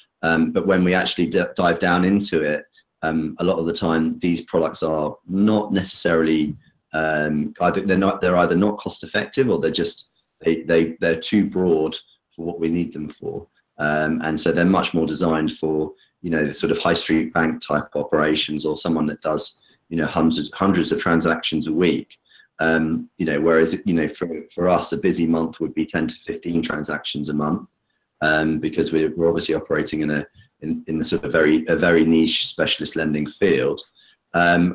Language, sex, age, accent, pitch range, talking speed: English, male, 30-49, British, 80-85 Hz, 195 wpm